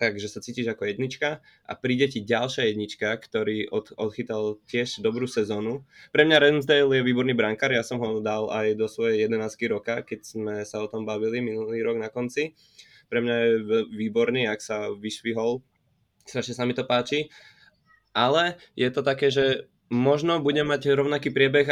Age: 20-39